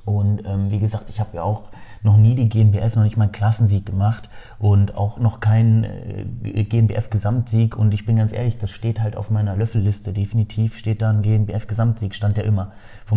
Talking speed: 195 wpm